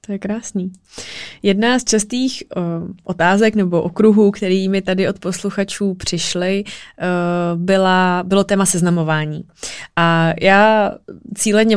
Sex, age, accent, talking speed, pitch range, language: female, 20-39, native, 120 wpm, 180-205 Hz, Czech